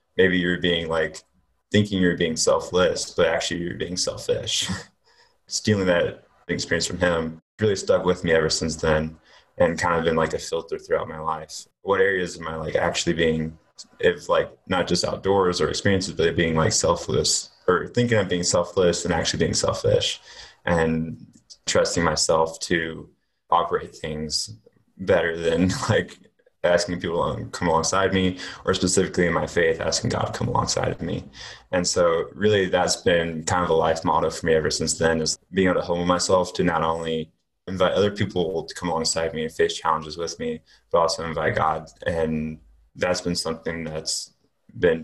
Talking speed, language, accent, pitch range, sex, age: 180 wpm, English, American, 80-115 Hz, male, 20-39